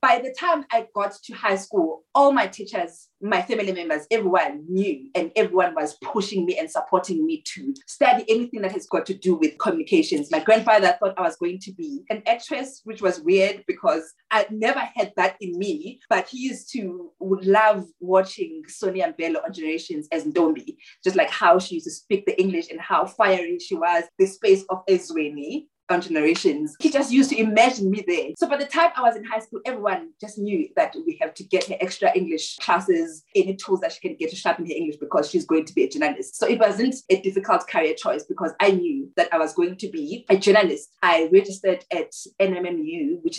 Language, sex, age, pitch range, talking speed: English, female, 20-39, 180-300 Hz, 210 wpm